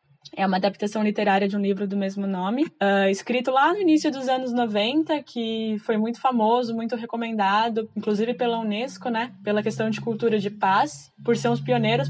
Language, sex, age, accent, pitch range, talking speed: Portuguese, female, 10-29, Brazilian, 200-235 Hz, 190 wpm